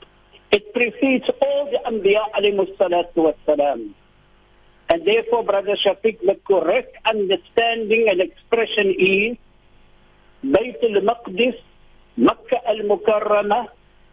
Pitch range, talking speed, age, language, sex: 200-300 Hz, 100 wpm, 50-69, English, male